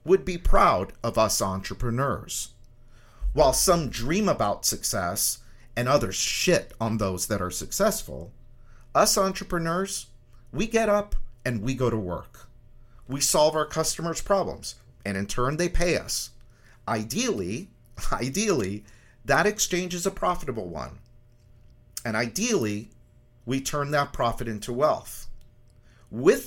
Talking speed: 130 wpm